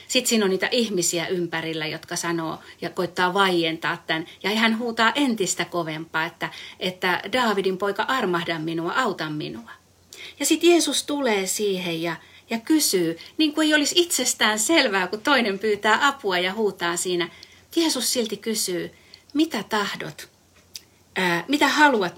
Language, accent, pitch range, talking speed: Finnish, native, 175-250 Hz, 145 wpm